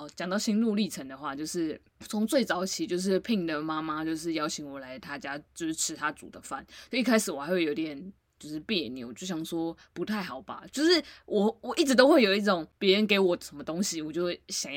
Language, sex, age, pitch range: Chinese, female, 20-39, 150-210 Hz